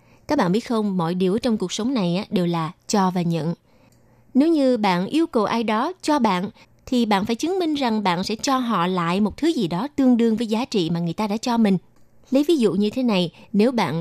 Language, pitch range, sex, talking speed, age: Vietnamese, 185-250 Hz, female, 250 wpm, 20-39